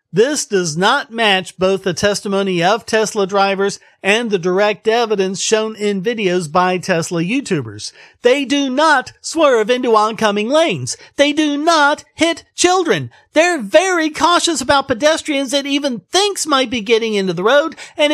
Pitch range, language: 185-265 Hz, English